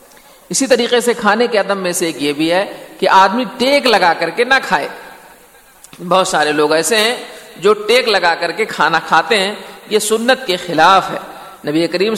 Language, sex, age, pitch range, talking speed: Urdu, male, 50-69, 165-235 Hz, 195 wpm